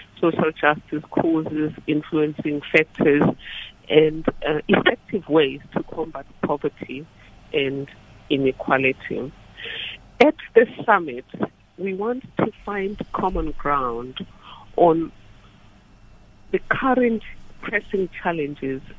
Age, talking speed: 50-69, 90 wpm